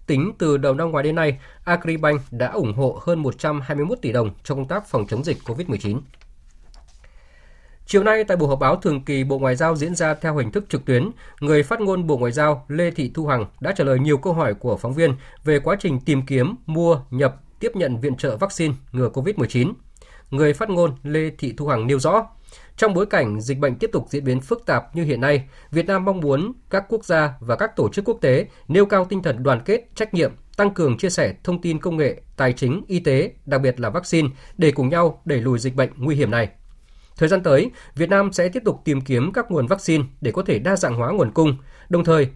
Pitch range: 130-170 Hz